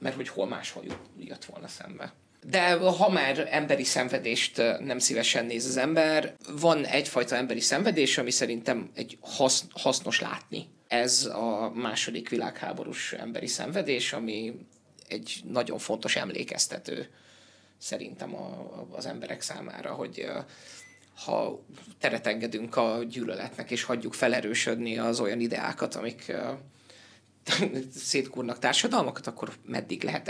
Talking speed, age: 115 wpm, 30-49